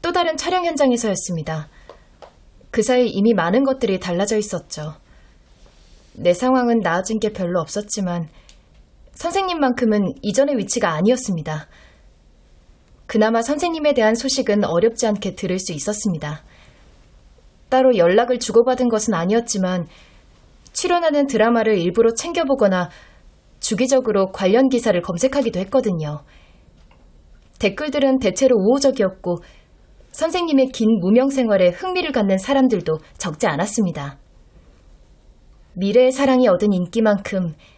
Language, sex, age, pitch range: Korean, female, 20-39, 165-250 Hz